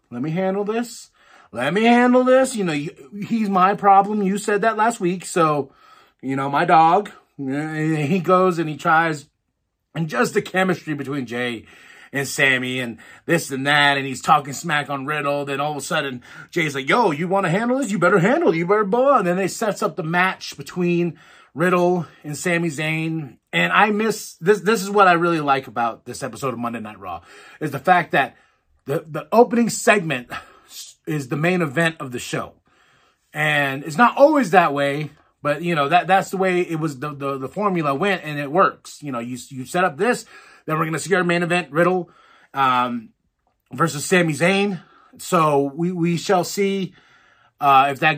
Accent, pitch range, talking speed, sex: American, 145-200 Hz, 200 wpm, male